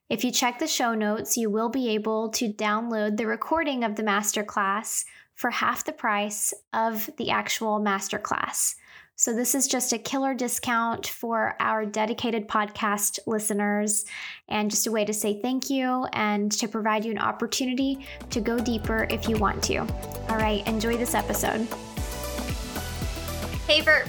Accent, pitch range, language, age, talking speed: American, 215-265 Hz, English, 10-29, 160 wpm